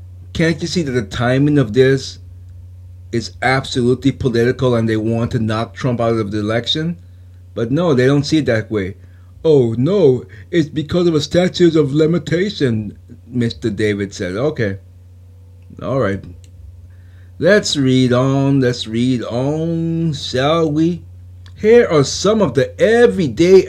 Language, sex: English, male